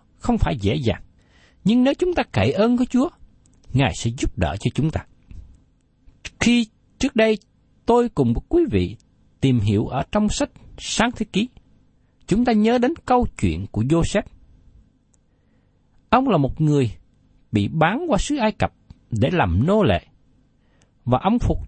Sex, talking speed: male, 165 wpm